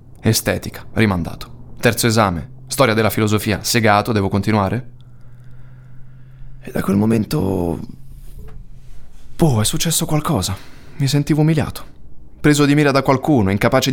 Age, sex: 20-39, male